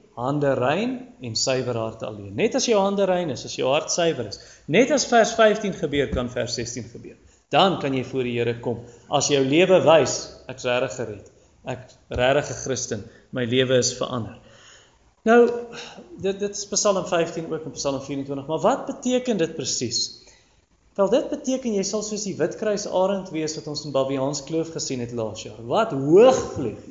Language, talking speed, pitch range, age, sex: English, 190 wpm, 135-205 Hz, 30-49, male